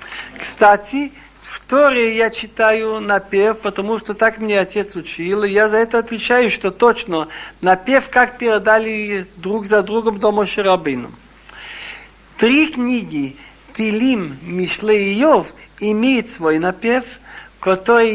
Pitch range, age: 205-250 Hz, 60-79